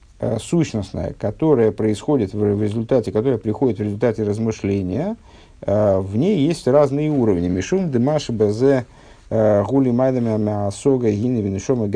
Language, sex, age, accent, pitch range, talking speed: Russian, male, 50-69, native, 105-130 Hz, 110 wpm